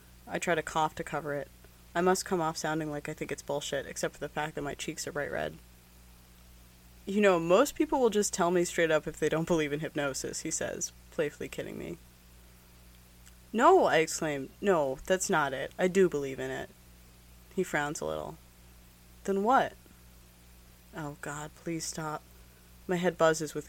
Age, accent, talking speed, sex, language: 20-39, American, 185 wpm, female, English